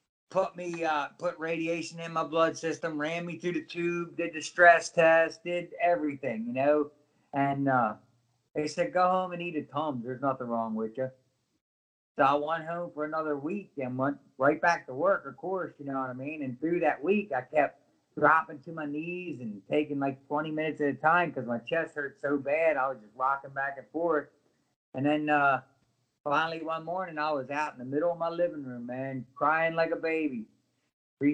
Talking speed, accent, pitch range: 210 wpm, American, 130-170 Hz